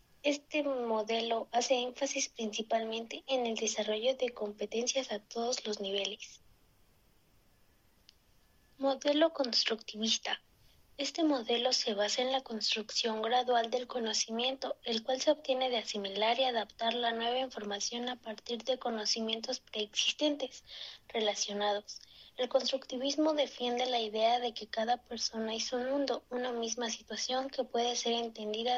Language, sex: Spanish, female